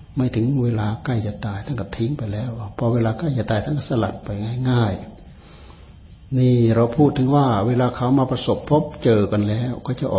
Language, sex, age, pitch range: Thai, male, 60-79, 105-130 Hz